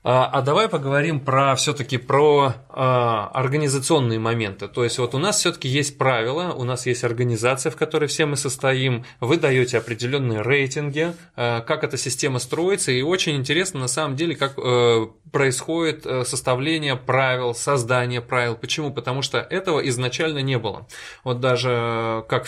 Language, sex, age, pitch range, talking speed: Russian, male, 20-39, 120-140 Hz, 155 wpm